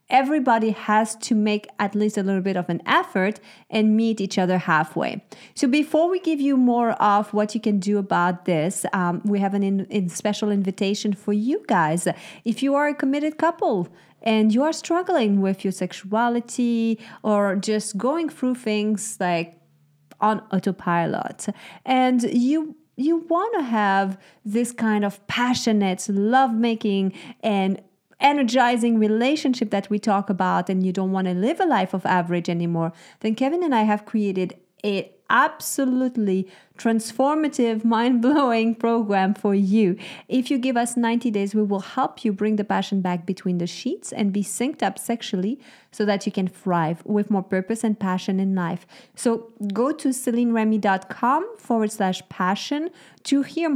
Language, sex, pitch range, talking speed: English, female, 190-240 Hz, 165 wpm